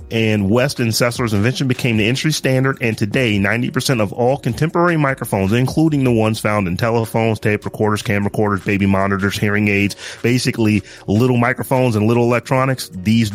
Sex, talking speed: male, 170 wpm